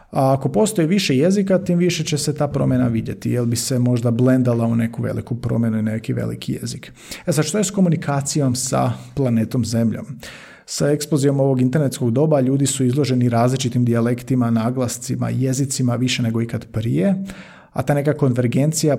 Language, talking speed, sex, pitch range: Croatian, 170 wpm, male, 120-145 Hz